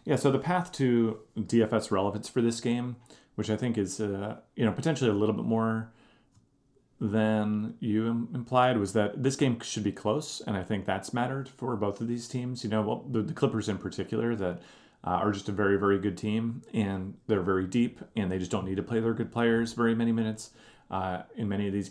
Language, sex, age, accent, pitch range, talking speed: English, male, 30-49, American, 95-115 Hz, 220 wpm